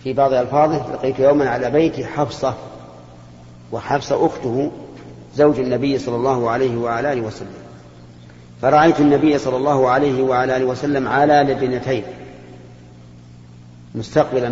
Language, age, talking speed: Arabic, 50-69, 115 wpm